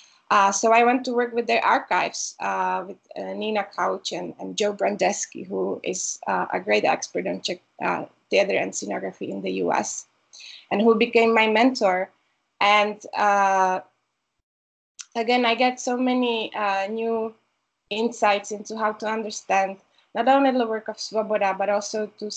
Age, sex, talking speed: 20-39, female, 165 wpm